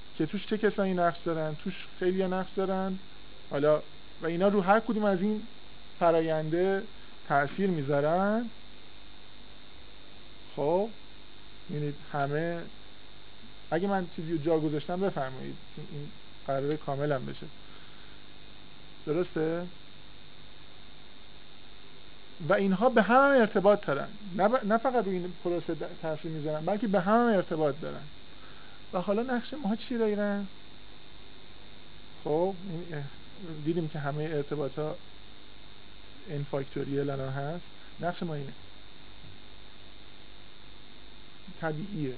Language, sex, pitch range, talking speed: Persian, male, 145-190 Hz, 100 wpm